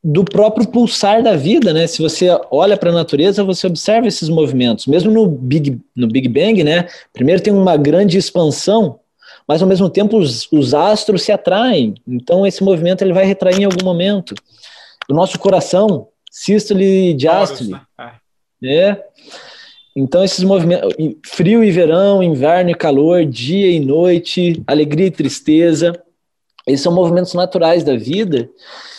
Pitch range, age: 150-200 Hz, 20-39